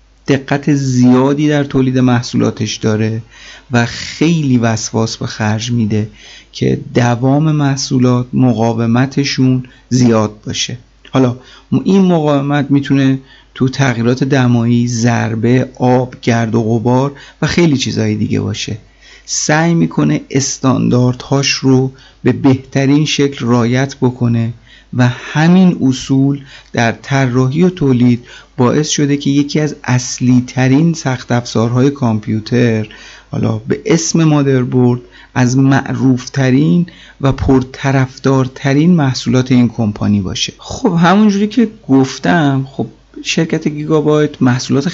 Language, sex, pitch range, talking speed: Persian, male, 120-140 Hz, 110 wpm